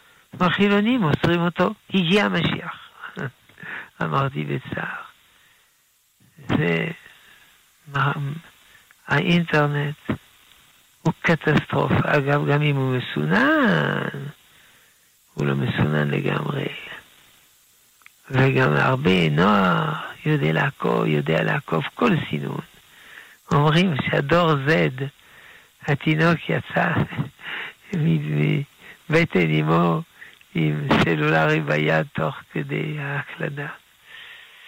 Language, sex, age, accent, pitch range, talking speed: Hebrew, male, 60-79, Italian, 100-165 Hz, 70 wpm